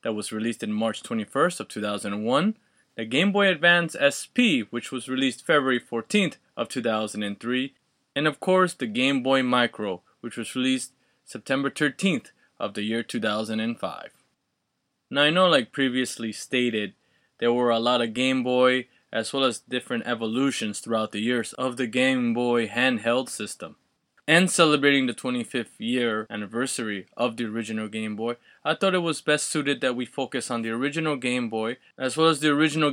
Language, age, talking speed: English, 20-39, 170 wpm